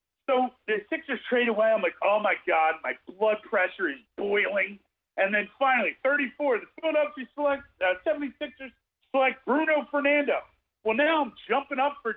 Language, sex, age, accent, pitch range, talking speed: English, male, 40-59, American, 205-280 Hz, 165 wpm